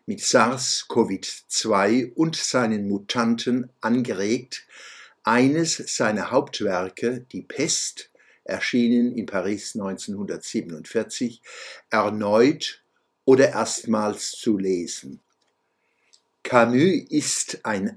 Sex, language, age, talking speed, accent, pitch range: male, German, 60-79, 75 wpm, German, 115-130 Hz